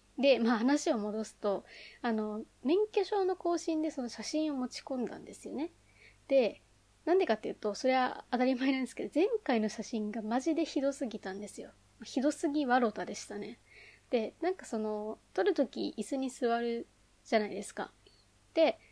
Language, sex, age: Japanese, female, 20-39